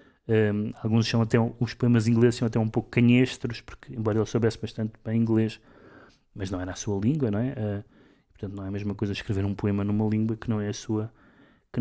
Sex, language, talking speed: male, Portuguese, 235 wpm